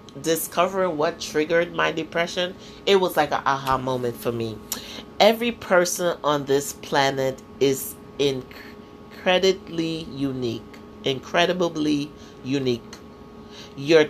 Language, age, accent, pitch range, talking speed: English, 40-59, American, 140-180 Hz, 105 wpm